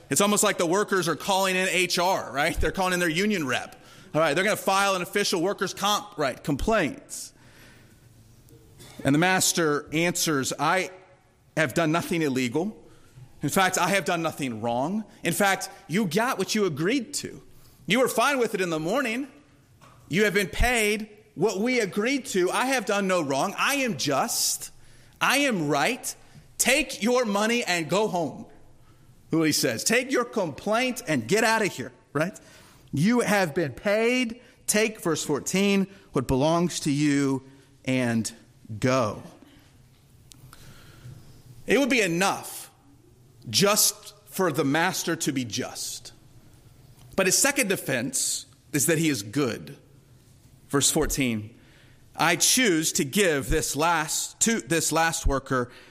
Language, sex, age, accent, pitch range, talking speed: English, male, 30-49, American, 130-200 Hz, 150 wpm